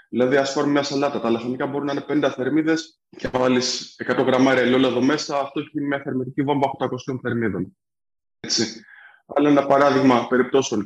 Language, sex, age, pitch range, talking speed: Greek, male, 20-39, 135-180 Hz, 170 wpm